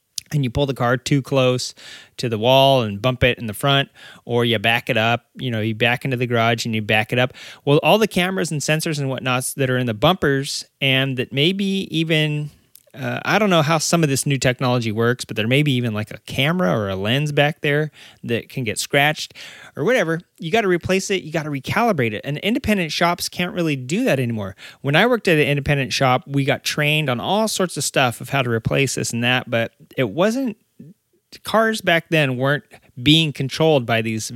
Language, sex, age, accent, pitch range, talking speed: English, male, 30-49, American, 125-165 Hz, 230 wpm